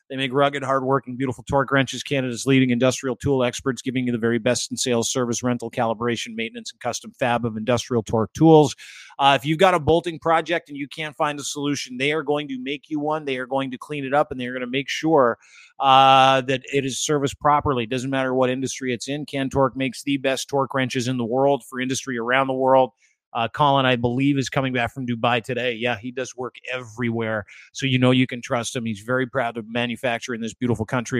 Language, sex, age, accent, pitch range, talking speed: English, male, 30-49, American, 125-145 Hz, 235 wpm